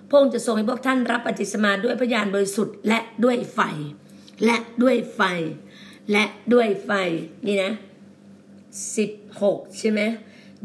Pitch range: 195-240 Hz